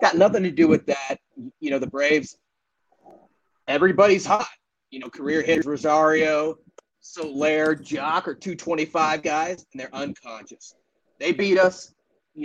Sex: male